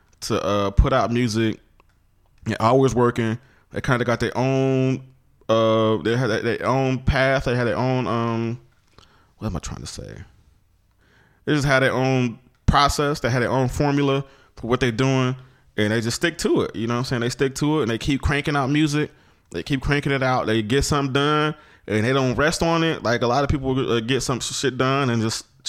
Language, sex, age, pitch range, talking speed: English, male, 20-39, 115-150 Hz, 220 wpm